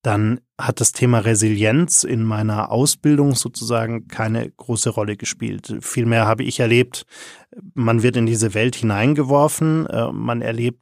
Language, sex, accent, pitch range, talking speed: German, male, German, 110-125 Hz, 140 wpm